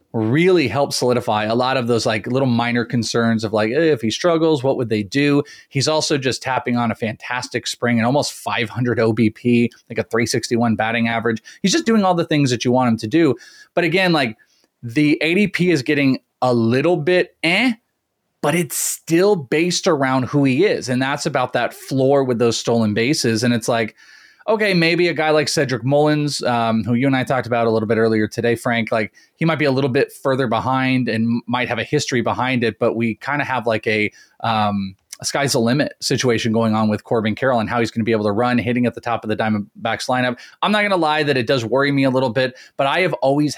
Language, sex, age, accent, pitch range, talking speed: English, male, 30-49, American, 115-150 Hz, 235 wpm